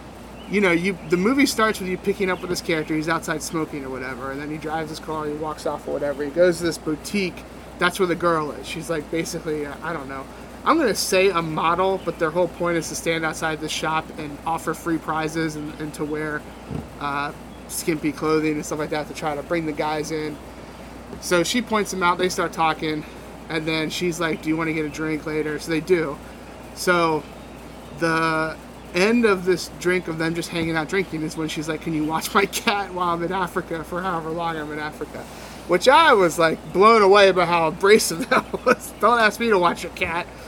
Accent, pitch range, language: American, 155-180 Hz, English